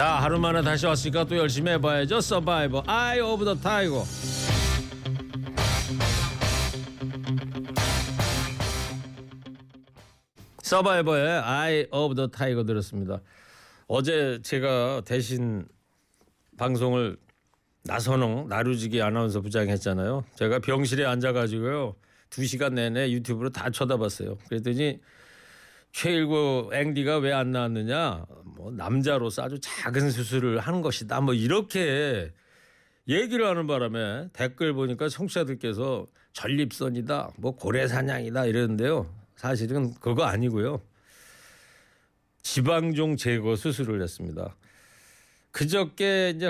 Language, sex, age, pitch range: Korean, male, 40-59, 115-150 Hz